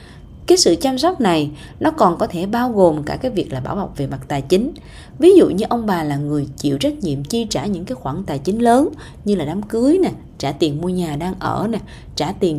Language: Vietnamese